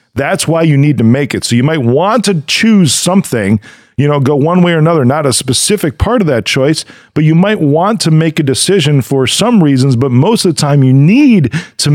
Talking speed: 235 wpm